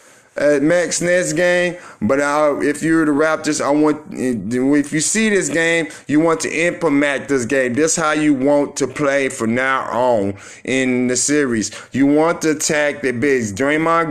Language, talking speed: English, 185 wpm